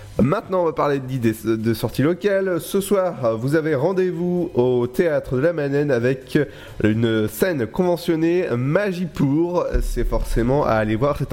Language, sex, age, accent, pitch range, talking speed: French, male, 30-49, French, 120-175 Hz, 165 wpm